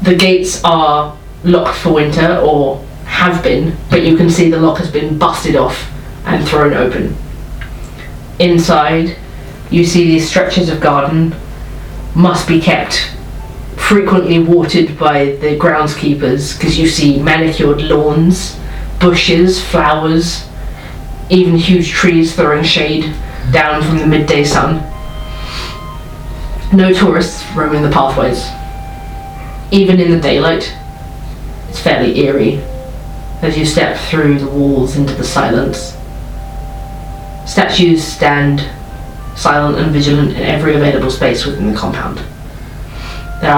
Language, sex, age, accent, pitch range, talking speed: English, female, 30-49, British, 140-170 Hz, 120 wpm